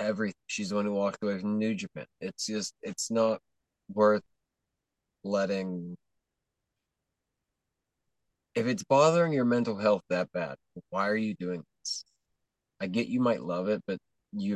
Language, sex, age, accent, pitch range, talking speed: English, male, 20-39, American, 95-130 Hz, 155 wpm